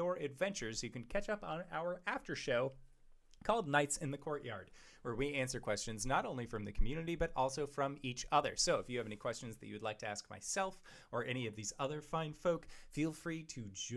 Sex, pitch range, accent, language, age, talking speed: male, 125-185 Hz, American, English, 20-39, 230 wpm